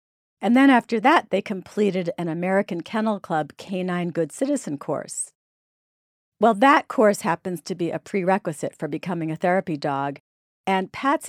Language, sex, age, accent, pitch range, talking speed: English, female, 50-69, American, 170-220 Hz, 155 wpm